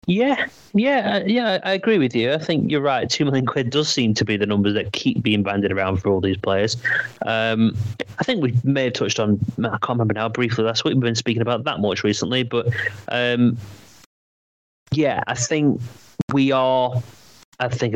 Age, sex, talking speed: 30-49, male, 200 wpm